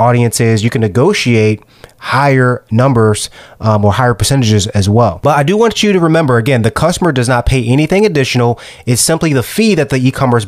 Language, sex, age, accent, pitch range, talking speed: English, male, 30-49, American, 110-135 Hz, 195 wpm